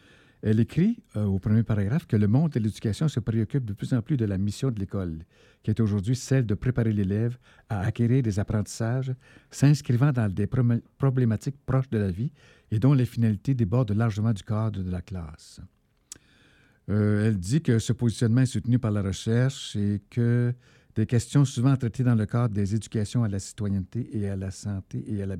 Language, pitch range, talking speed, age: French, 105-130 Hz, 200 wpm, 60-79